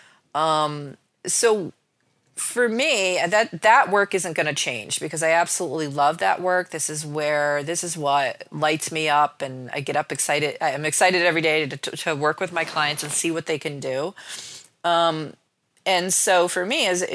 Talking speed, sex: 195 wpm, female